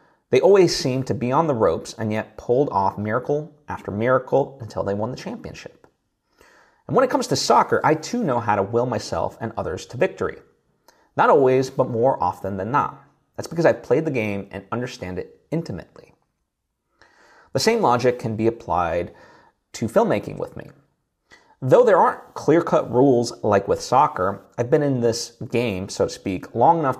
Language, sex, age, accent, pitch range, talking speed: English, male, 30-49, American, 105-155 Hz, 180 wpm